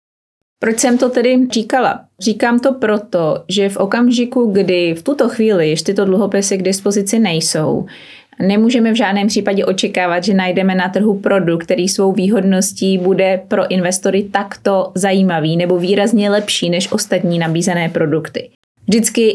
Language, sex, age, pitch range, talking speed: Czech, female, 30-49, 180-215 Hz, 145 wpm